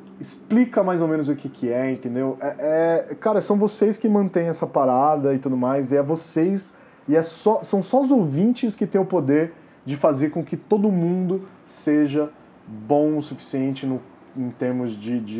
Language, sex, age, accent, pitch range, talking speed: Portuguese, male, 20-39, Brazilian, 125-165 Hz, 175 wpm